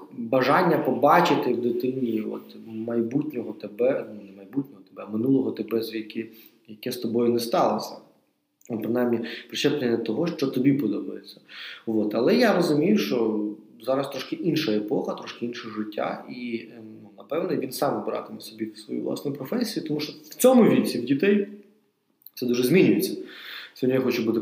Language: Ukrainian